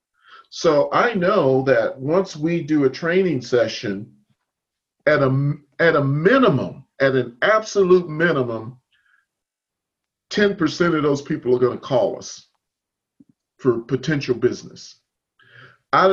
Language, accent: English, American